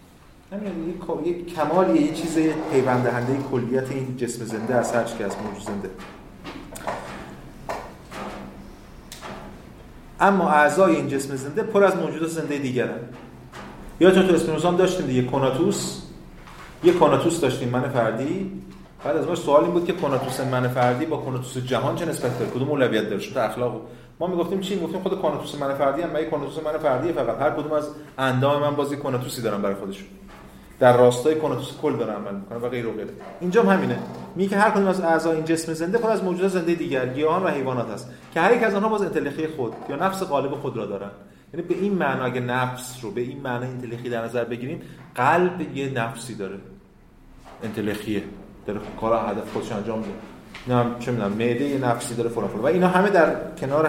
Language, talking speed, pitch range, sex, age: Persian, 180 wpm, 120-165 Hz, male, 30-49